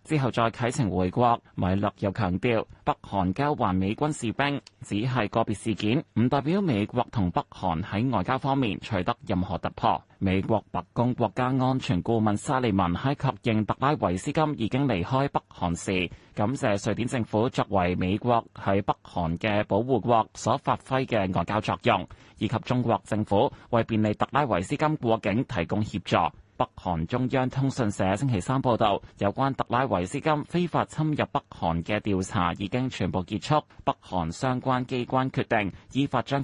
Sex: male